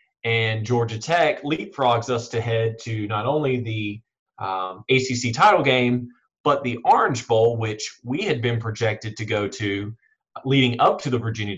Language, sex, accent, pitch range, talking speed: English, male, American, 115-140 Hz, 165 wpm